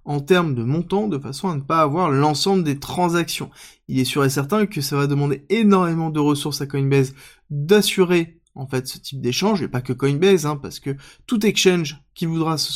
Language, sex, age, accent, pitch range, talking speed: French, male, 20-39, French, 140-195 Hz, 210 wpm